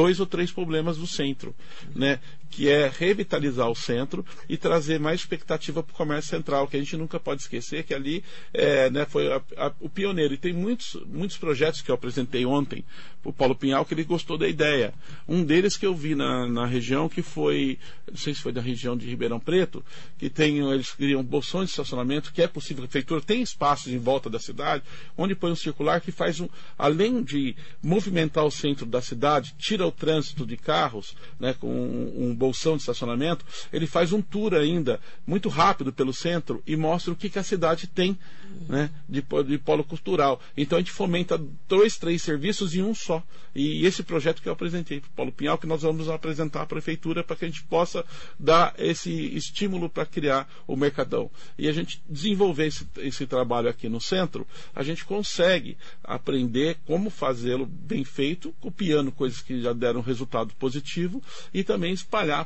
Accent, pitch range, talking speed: Brazilian, 140-175 Hz, 195 wpm